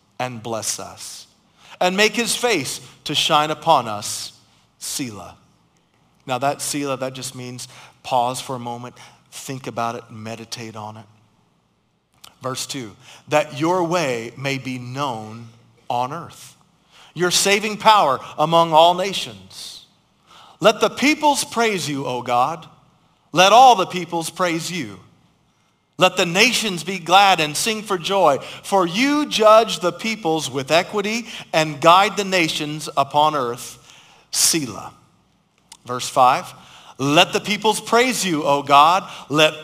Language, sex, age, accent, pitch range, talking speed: English, male, 40-59, American, 130-190 Hz, 135 wpm